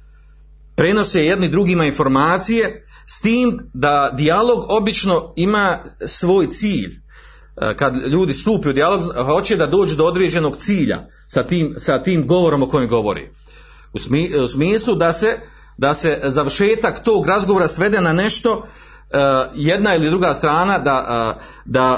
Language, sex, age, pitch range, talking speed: Croatian, male, 40-59, 140-195 Hz, 130 wpm